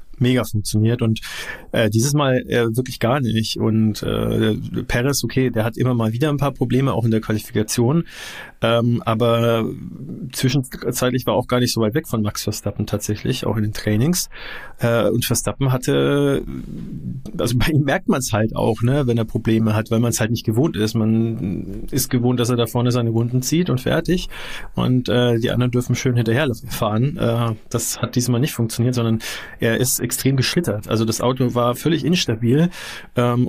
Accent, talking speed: German, 190 wpm